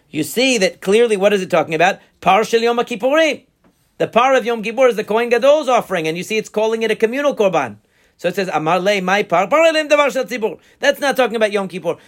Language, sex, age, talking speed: English, male, 40-59, 200 wpm